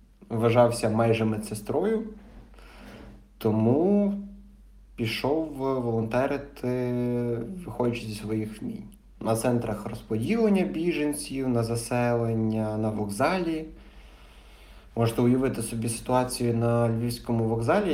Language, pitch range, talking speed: English, 110-130 Hz, 85 wpm